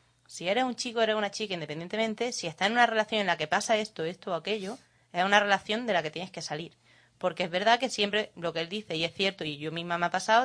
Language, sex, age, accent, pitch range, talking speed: Spanish, female, 20-39, Spanish, 165-205 Hz, 280 wpm